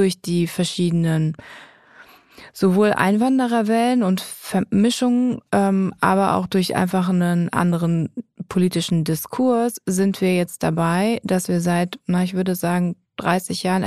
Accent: German